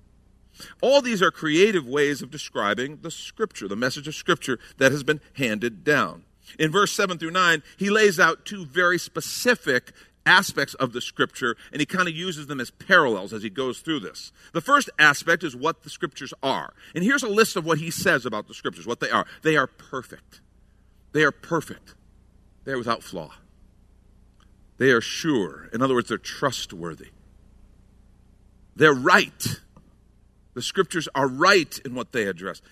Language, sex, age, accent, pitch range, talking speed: English, male, 50-69, American, 110-165 Hz, 175 wpm